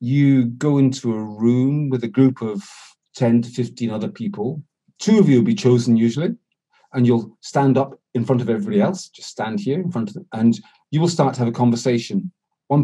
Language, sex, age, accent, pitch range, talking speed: English, male, 40-59, British, 125-170 Hz, 215 wpm